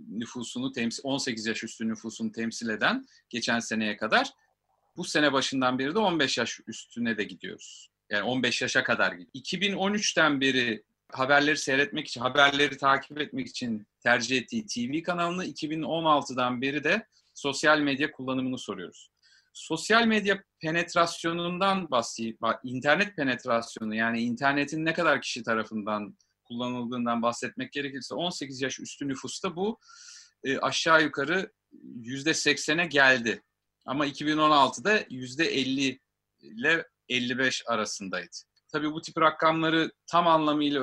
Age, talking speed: 40-59, 120 wpm